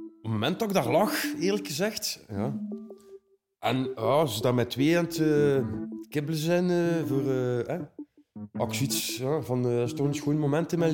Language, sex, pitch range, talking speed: Dutch, male, 110-140 Hz, 205 wpm